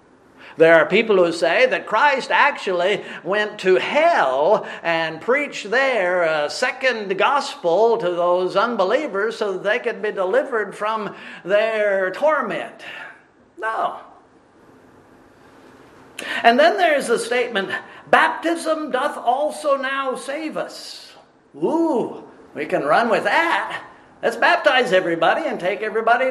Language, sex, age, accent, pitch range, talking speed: English, male, 50-69, American, 180-270 Hz, 120 wpm